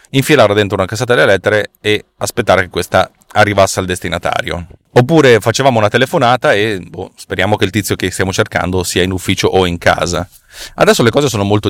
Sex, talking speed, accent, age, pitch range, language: male, 190 wpm, native, 30-49, 95-115 Hz, Italian